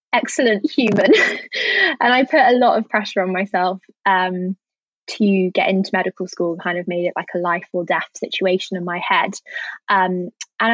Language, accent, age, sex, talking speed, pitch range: English, British, 20-39, female, 180 wpm, 185-210 Hz